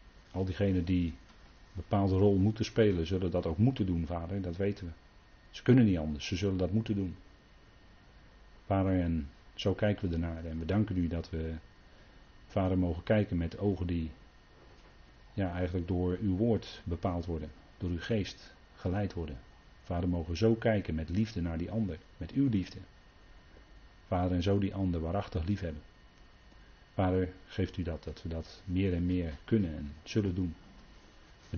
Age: 40-59